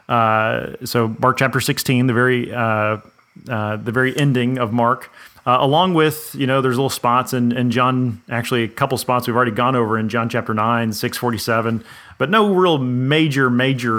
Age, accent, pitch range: 30-49, American, 120-145 Hz